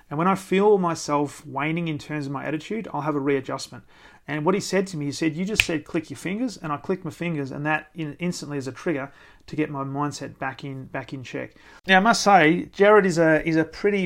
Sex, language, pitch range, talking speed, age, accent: male, English, 140-170 Hz, 250 wpm, 30-49, Australian